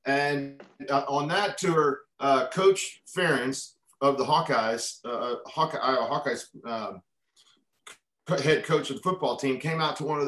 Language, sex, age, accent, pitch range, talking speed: English, male, 40-59, American, 135-170 Hz, 140 wpm